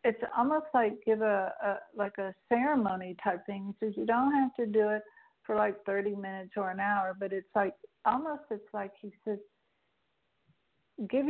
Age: 60-79